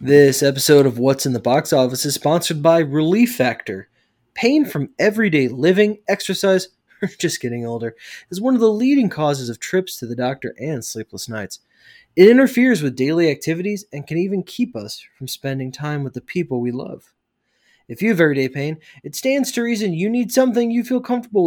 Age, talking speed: 20-39, 195 wpm